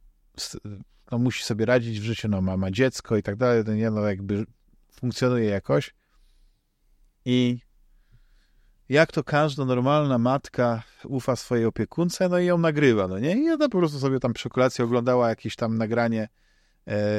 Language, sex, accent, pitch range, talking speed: Polish, male, native, 110-135 Hz, 165 wpm